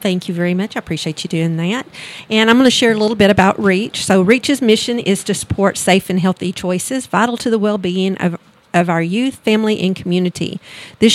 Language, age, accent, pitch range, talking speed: English, 50-69, American, 180-205 Hz, 220 wpm